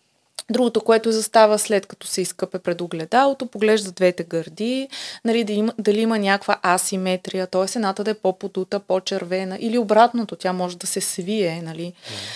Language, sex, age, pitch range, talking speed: Bulgarian, female, 20-39, 195-250 Hz, 160 wpm